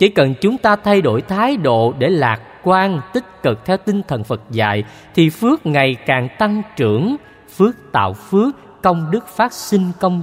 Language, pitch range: Vietnamese, 125-190 Hz